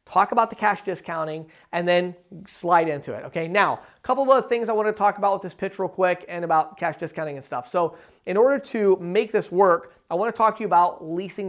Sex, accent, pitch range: male, American, 165-205 Hz